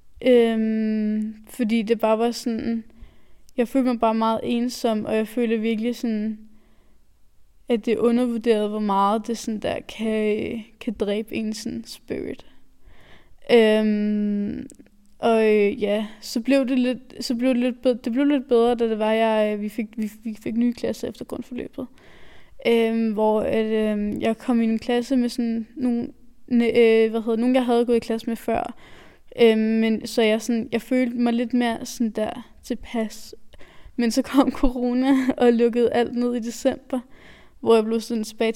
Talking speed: 175 wpm